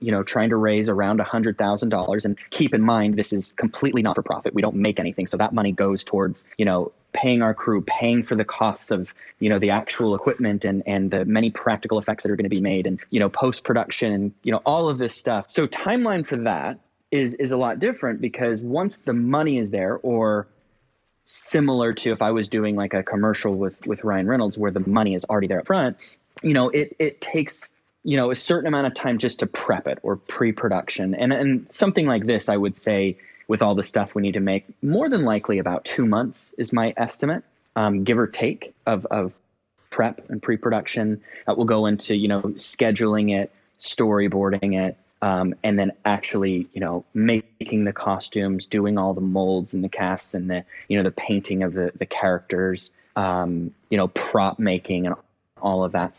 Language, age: English, 20-39